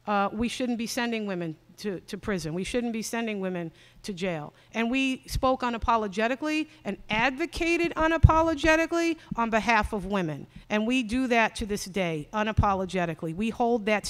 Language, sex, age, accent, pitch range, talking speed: English, female, 50-69, American, 190-235 Hz, 160 wpm